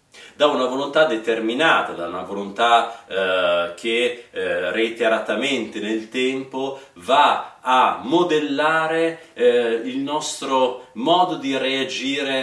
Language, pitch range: Italian, 115-150 Hz